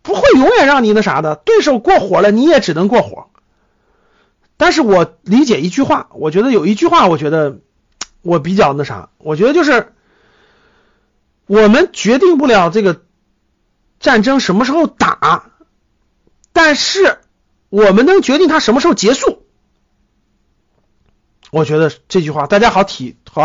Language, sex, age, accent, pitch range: Chinese, male, 50-69, native, 175-270 Hz